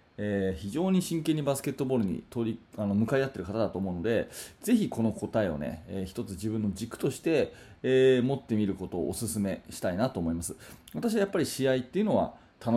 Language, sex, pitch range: Japanese, male, 105-155 Hz